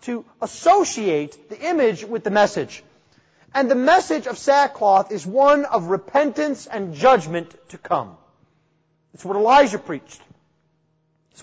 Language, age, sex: English, 30-49, male